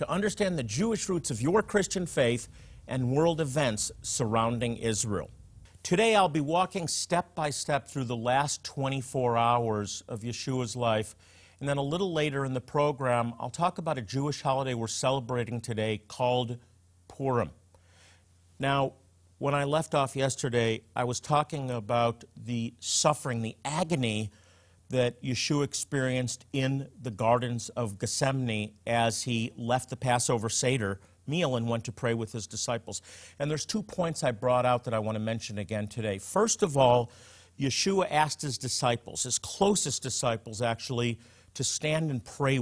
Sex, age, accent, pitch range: male, 50-69, American, 110-140 Hz